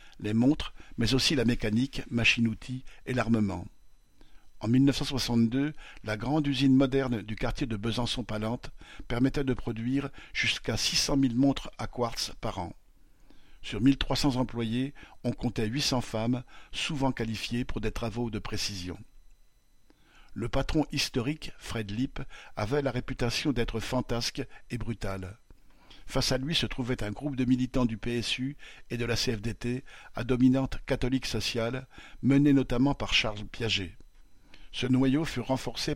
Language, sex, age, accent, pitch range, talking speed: French, male, 50-69, French, 110-135 Hz, 140 wpm